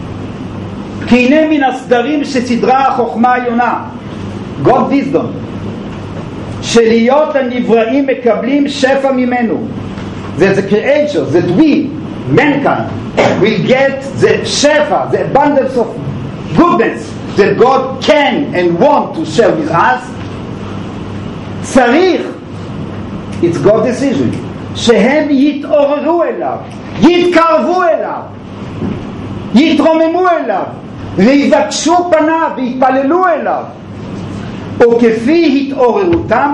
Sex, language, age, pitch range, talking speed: male, English, 50-69, 230-295 Hz, 70 wpm